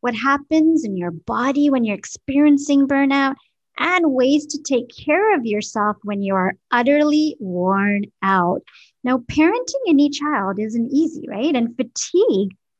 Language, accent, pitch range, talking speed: English, American, 205-290 Hz, 145 wpm